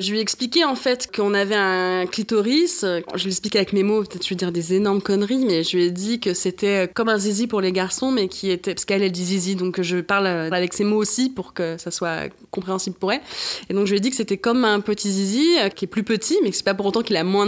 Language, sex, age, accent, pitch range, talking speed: French, female, 20-39, French, 185-230 Hz, 280 wpm